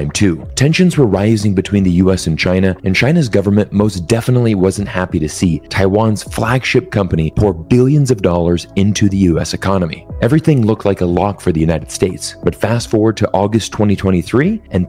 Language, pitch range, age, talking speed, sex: English, 90-115 Hz, 30-49, 180 wpm, male